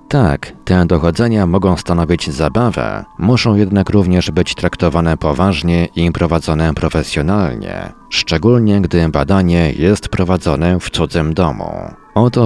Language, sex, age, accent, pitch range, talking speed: Polish, male, 40-59, native, 80-95 Hz, 115 wpm